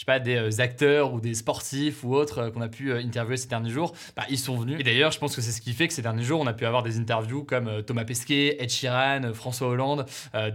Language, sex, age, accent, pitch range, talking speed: French, male, 20-39, French, 115-140 Hz, 300 wpm